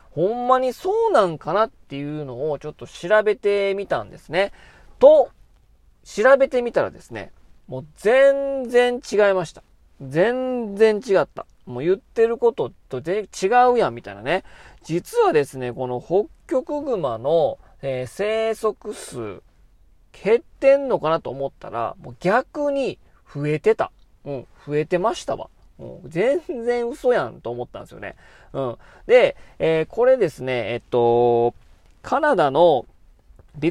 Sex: male